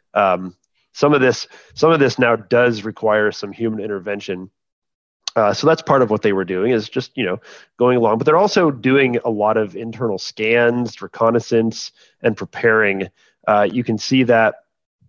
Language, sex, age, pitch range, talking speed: English, male, 30-49, 100-125 Hz, 180 wpm